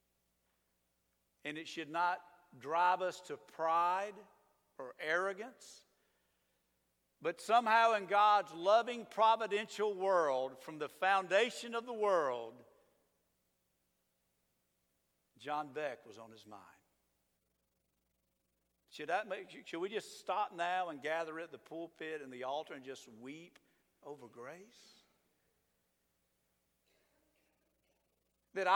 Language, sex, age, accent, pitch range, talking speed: English, male, 50-69, American, 120-180 Hz, 105 wpm